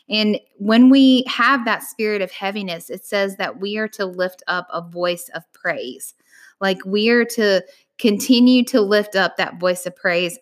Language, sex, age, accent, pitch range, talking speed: English, female, 10-29, American, 175-215 Hz, 185 wpm